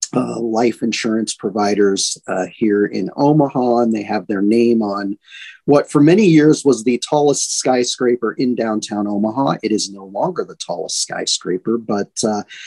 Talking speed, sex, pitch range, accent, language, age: 160 wpm, male, 125-170 Hz, American, English, 40-59